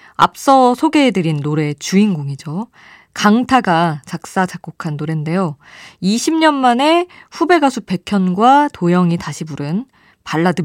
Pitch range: 155-235 Hz